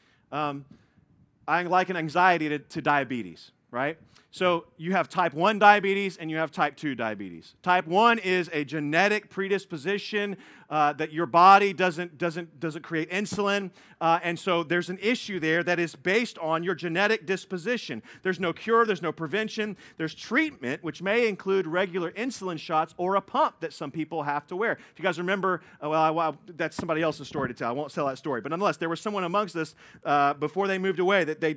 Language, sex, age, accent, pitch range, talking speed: English, male, 40-59, American, 160-200 Hz, 200 wpm